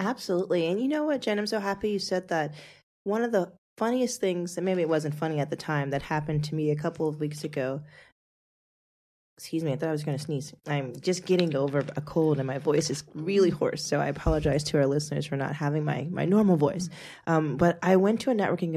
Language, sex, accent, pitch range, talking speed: English, female, American, 150-185 Hz, 240 wpm